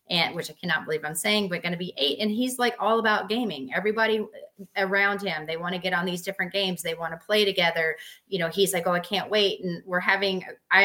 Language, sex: English, female